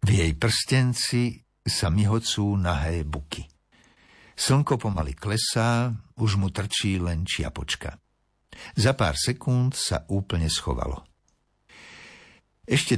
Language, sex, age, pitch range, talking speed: Slovak, male, 60-79, 85-120 Hz, 100 wpm